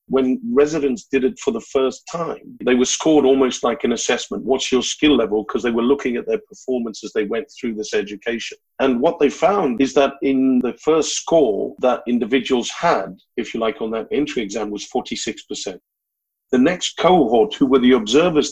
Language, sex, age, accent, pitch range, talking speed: English, male, 40-59, British, 125-150 Hz, 200 wpm